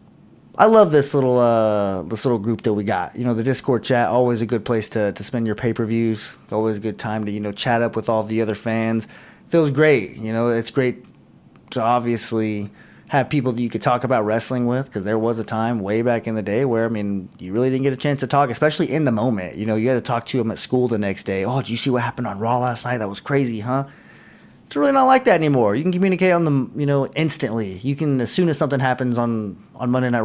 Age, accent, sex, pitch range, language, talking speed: 30-49, American, male, 115-140 Hz, English, 265 wpm